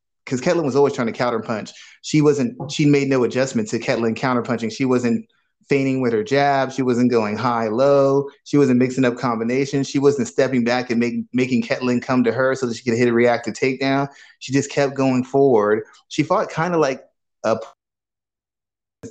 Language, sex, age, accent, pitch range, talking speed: English, male, 30-49, American, 115-140 Hz, 195 wpm